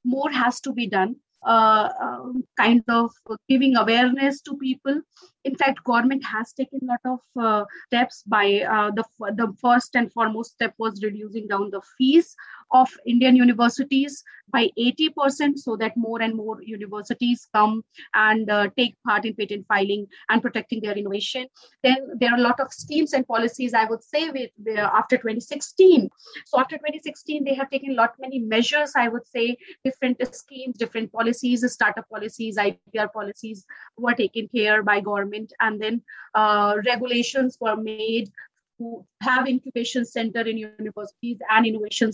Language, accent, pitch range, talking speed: English, Indian, 220-260 Hz, 165 wpm